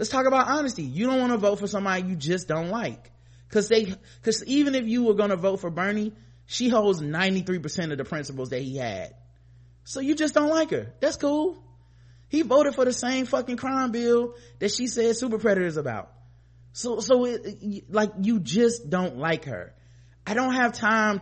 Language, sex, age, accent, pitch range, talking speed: English, male, 30-49, American, 140-220 Hz, 200 wpm